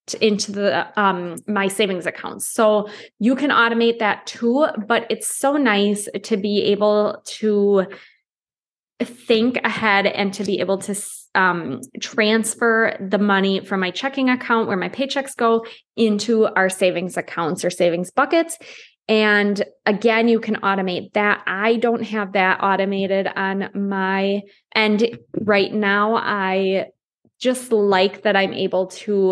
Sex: female